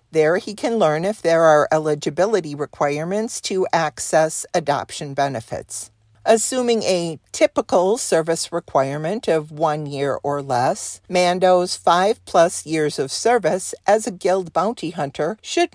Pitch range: 155-205 Hz